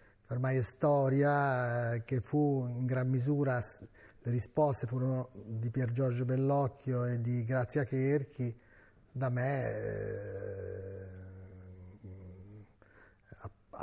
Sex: male